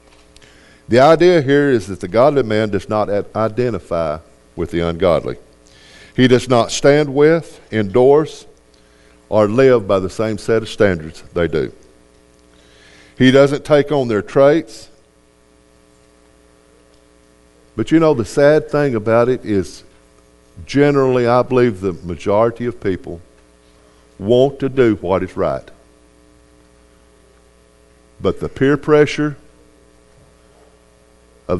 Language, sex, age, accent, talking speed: English, male, 50-69, American, 120 wpm